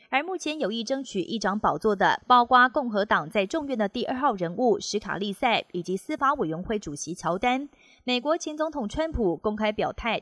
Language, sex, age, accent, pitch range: Chinese, female, 30-49, native, 190-255 Hz